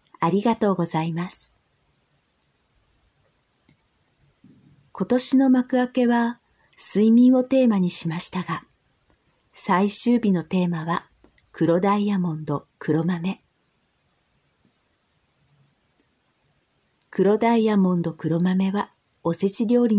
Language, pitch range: Japanese, 170-215 Hz